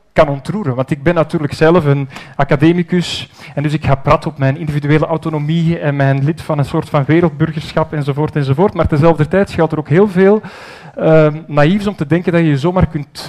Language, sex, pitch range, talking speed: Dutch, male, 150-180 Hz, 210 wpm